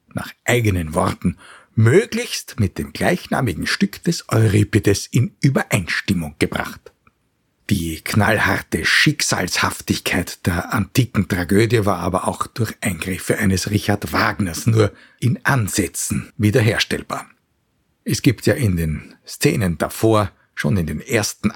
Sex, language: male, German